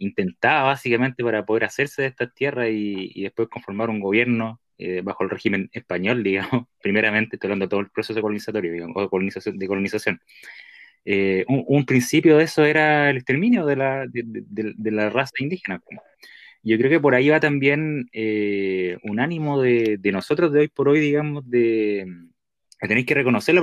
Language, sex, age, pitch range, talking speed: Spanish, male, 20-39, 100-135 Hz, 185 wpm